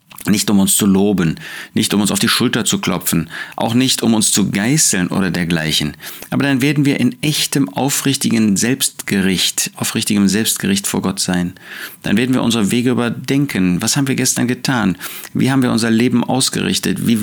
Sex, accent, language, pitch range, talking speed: male, German, German, 100-130 Hz, 180 wpm